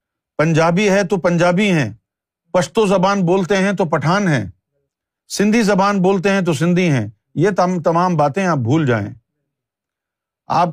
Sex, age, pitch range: male, 50-69, 135-195 Hz